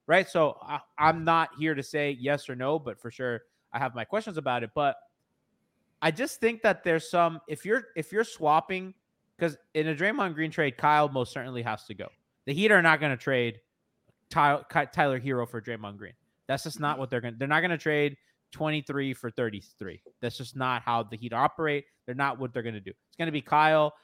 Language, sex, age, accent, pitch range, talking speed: English, male, 20-39, American, 120-175 Hz, 220 wpm